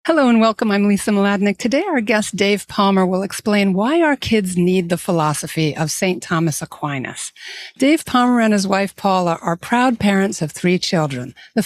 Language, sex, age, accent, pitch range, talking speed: English, female, 60-79, American, 185-235 Hz, 185 wpm